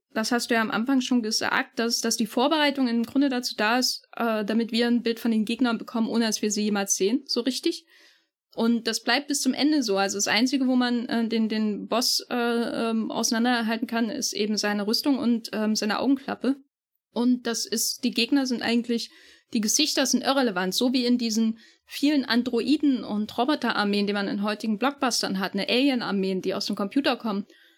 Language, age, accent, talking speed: German, 10-29, German, 205 wpm